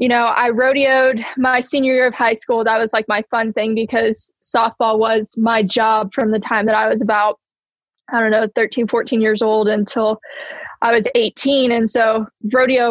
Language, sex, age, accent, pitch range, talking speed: English, female, 10-29, American, 215-240 Hz, 195 wpm